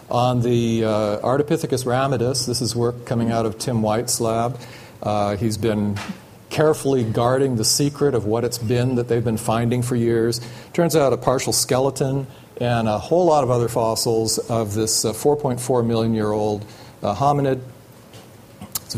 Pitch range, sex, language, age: 110-130 Hz, male, English, 40-59